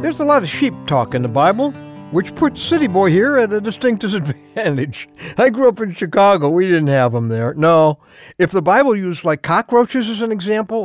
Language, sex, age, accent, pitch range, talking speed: English, male, 60-79, American, 145-215 Hz, 210 wpm